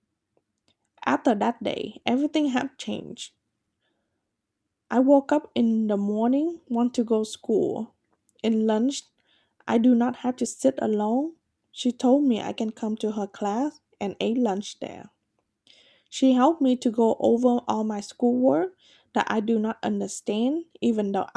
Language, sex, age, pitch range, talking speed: English, female, 10-29, 210-265 Hz, 150 wpm